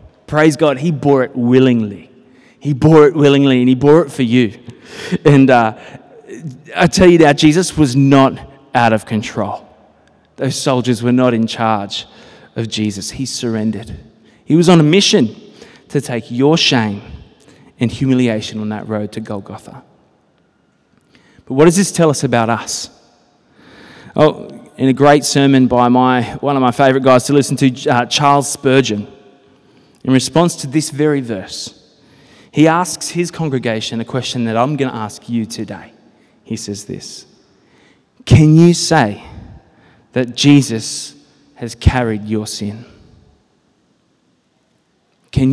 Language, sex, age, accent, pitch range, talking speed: English, male, 20-39, Australian, 115-155 Hz, 150 wpm